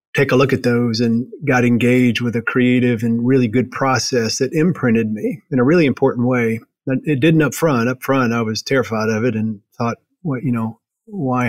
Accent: American